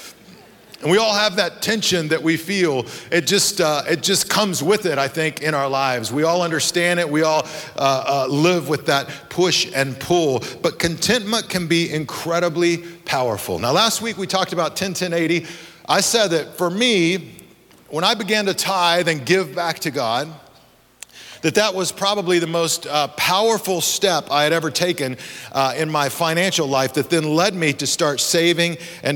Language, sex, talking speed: English, male, 185 wpm